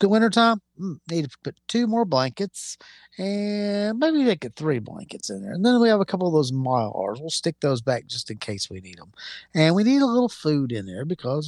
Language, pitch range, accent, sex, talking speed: English, 135-195 Hz, American, male, 235 wpm